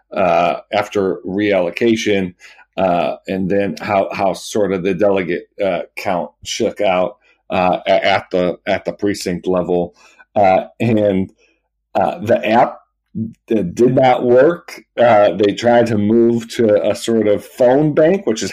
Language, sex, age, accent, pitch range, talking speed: English, male, 40-59, American, 100-120 Hz, 145 wpm